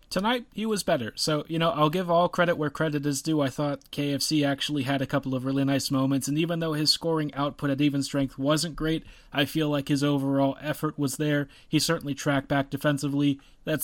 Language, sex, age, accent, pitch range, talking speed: English, male, 30-49, American, 130-150 Hz, 220 wpm